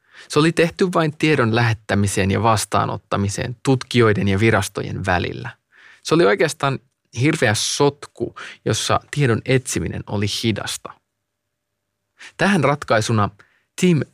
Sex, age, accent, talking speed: male, 20-39, native, 105 wpm